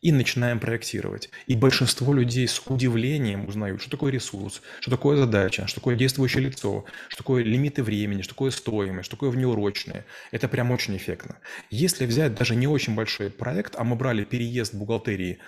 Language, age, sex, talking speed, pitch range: Russian, 20-39, male, 175 wpm, 110-130 Hz